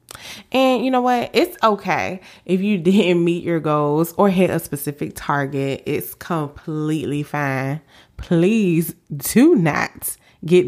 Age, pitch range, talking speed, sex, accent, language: 20-39, 150-195 Hz, 135 wpm, female, American, English